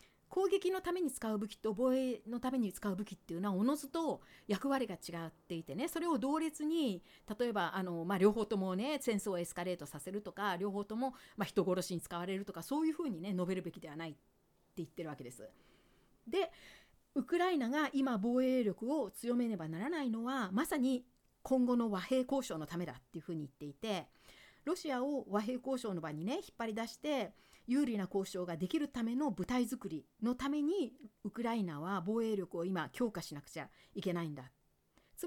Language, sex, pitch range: Japanese, female, 185-260 Hz